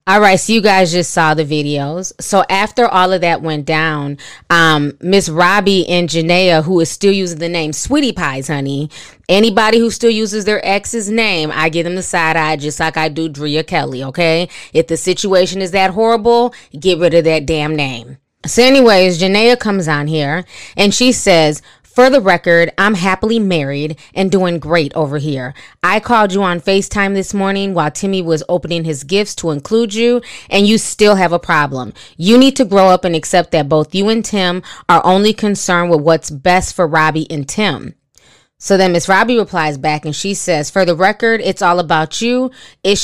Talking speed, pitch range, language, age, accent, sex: 200 wpm, 160-200 Hz, English, 20-39, American, female